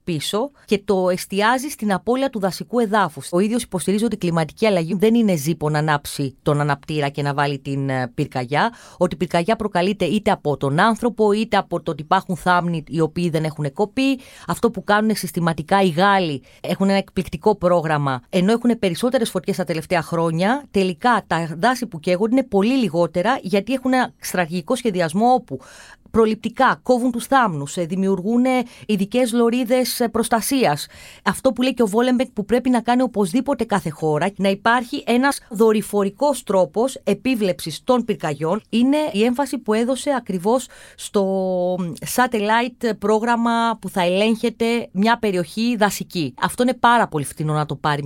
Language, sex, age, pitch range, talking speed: Greek, female, 30-49, 175-235 Hz, 160 wpm